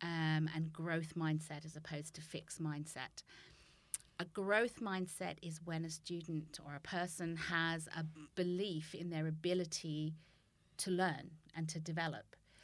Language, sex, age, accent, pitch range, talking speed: English, female, 30-49, British, 155-175 Hz, 140 wpm